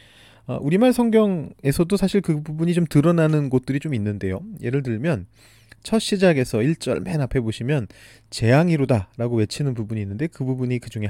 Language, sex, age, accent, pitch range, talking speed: English, male, 30-49, Korean, 110-155 Hz, 150 wpm